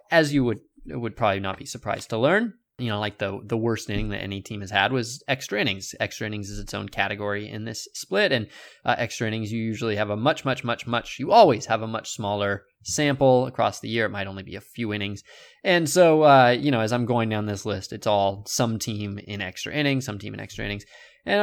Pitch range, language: 105-135 Hz, English